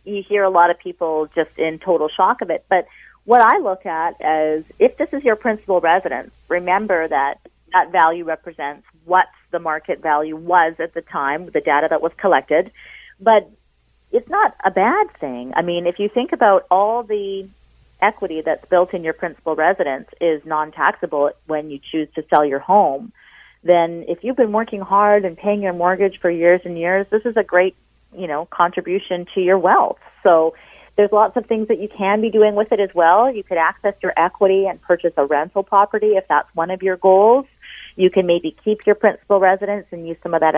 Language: English